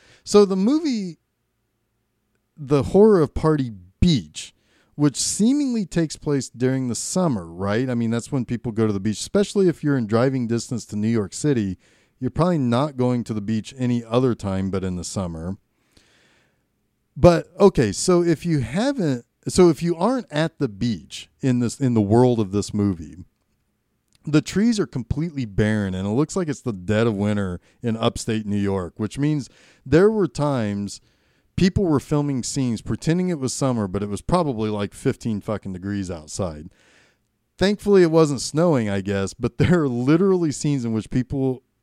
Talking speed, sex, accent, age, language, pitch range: 180 wpm, male, American, 40-59, English, 105-155 Hz